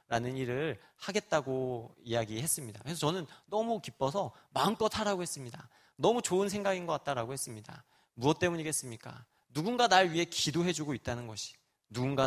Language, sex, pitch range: Korean, male, 125-175 Hz